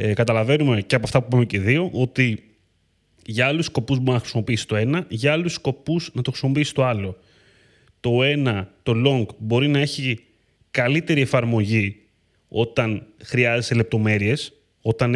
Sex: male